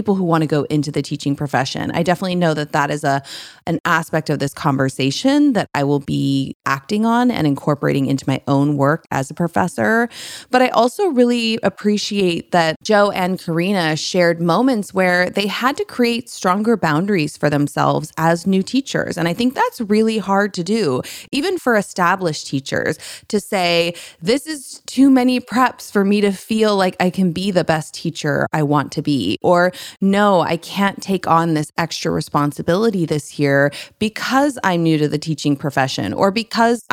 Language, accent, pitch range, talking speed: English, American, 155-220 Hz, 185 wpm